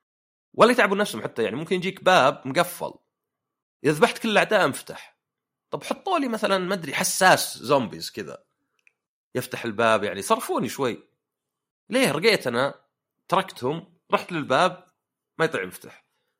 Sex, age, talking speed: male, 30-49, 135 wpm